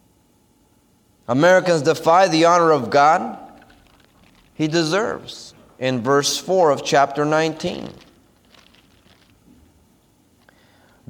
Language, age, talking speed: English, 30-49, 75 wpm